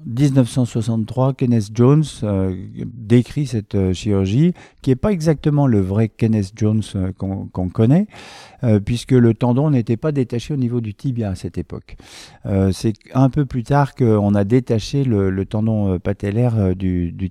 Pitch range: 100-125 Hz